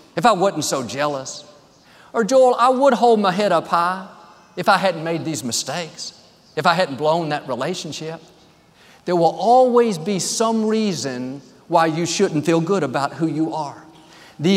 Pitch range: 155-215 Hz